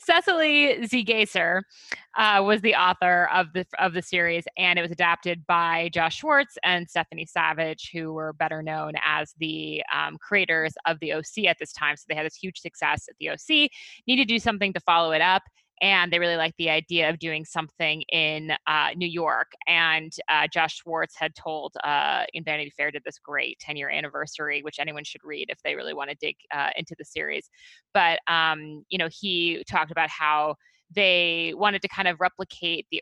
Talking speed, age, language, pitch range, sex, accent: 200 wpm, 20-39, English, 155-190 Hz, female, American